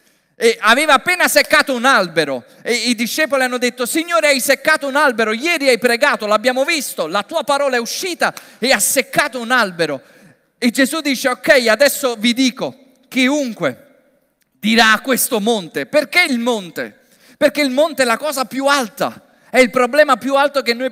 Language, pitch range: Italian, 235-285 Hz